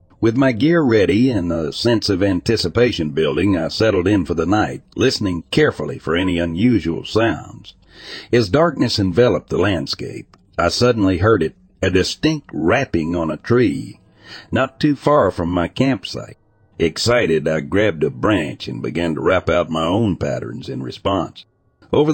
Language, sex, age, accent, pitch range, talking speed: English, male, 60-79, American, 90-120 Hz, 160 wpm